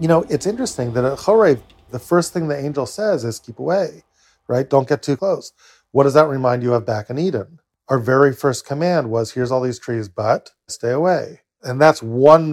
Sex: male